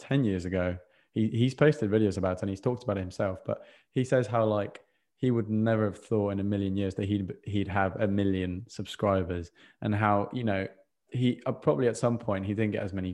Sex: male